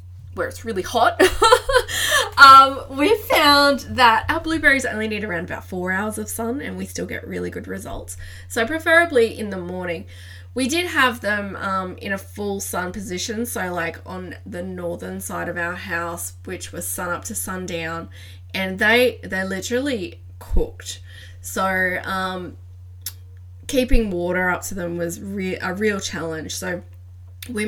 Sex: female